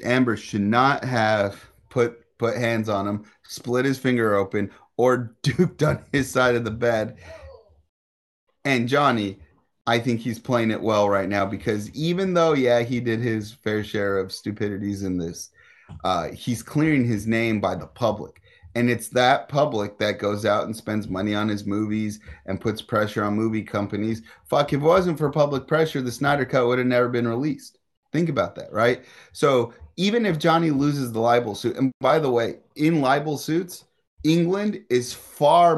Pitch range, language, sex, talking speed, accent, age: 105-130 Hz, English, male, 180 wpm, American, 30-49